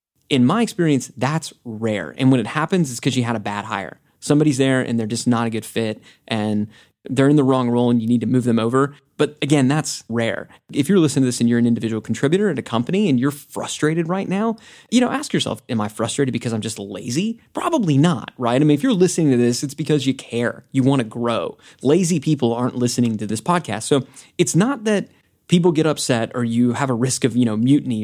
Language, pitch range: English, 115-155 Hz